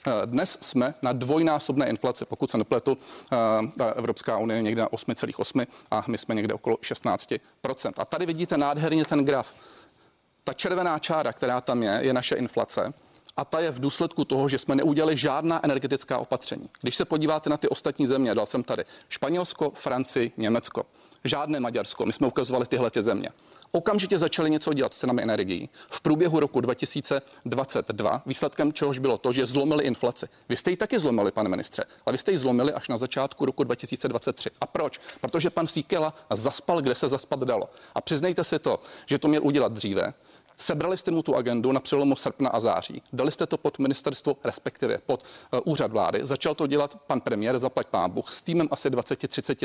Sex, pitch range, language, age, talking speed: male, 135-160 Hz, Czech, 40-59, 185 wpm